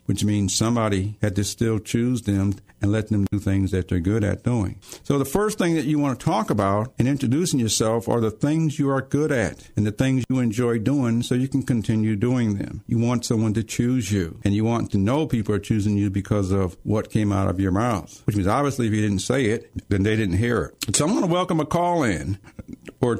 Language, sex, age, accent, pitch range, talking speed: English, male, 60-79, American, 105-140 Hz, 245 wpm